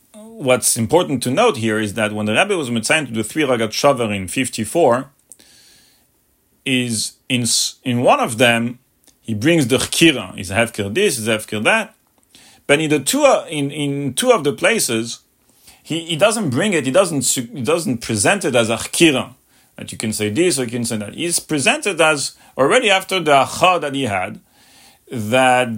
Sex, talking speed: male, 185 wpm